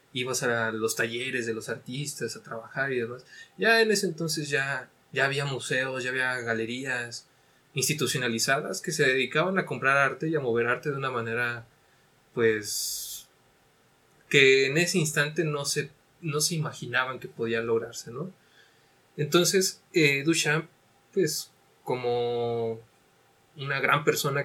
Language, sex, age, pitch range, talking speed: Spanish, male, 20-39, 125-160 Hz, 140 wpm